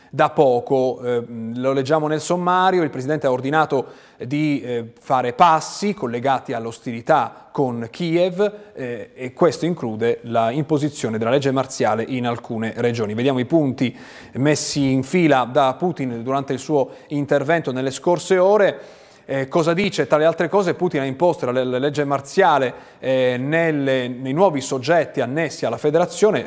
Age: 30-49